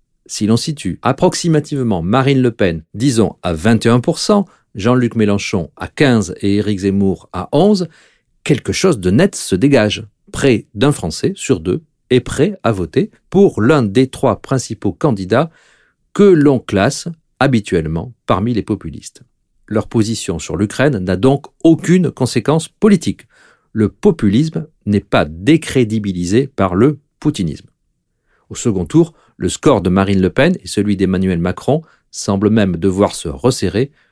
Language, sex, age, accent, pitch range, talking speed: French, male, 50-69, French, 100-155 Hz, 145 wpm